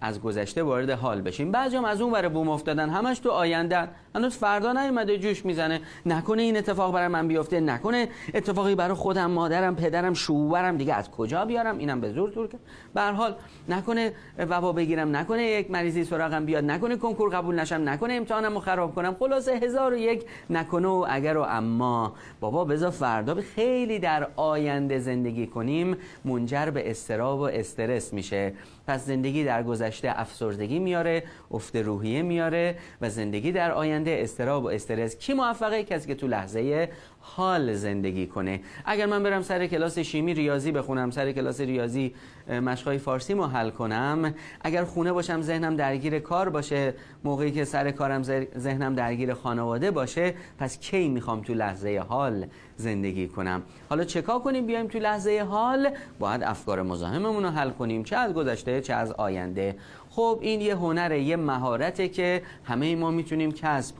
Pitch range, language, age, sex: 125-185 Hz, Persian, 30-49, male